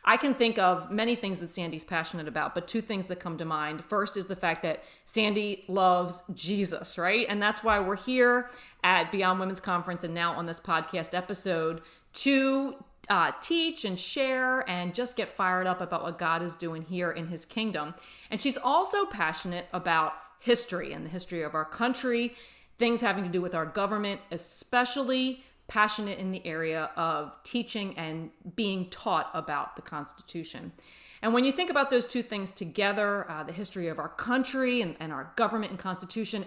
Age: 40-59